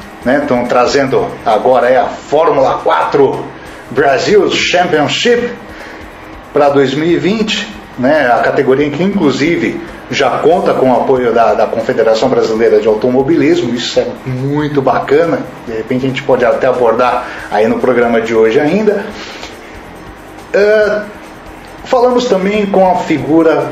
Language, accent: Portuguese, Brazilian